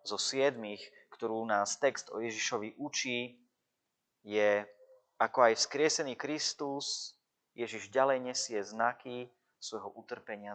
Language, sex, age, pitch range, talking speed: Slovak, male, 30-49, 105-135 Hz, 110 wpm